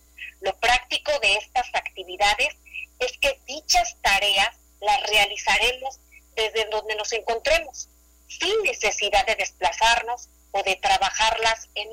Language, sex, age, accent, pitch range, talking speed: Spanish, female, 40-59, Mexican, 195-270 Hz, 115 wpm